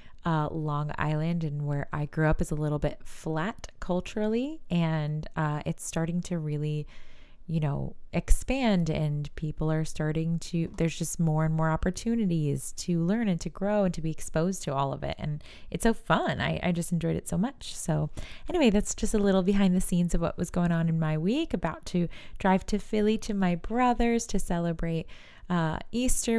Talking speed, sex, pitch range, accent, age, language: 200 wpm, female, 160-210 Hz, American, 20-39, English